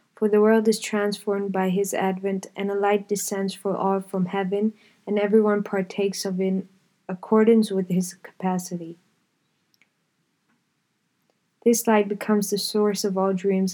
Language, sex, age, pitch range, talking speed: English, female, 20-39, 190-210 Hz, 150 wpm